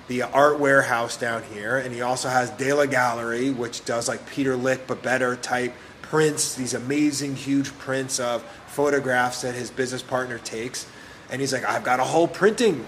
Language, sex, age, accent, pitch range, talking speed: English, male, 30-49, American, 125-150 Hz, 180 wpm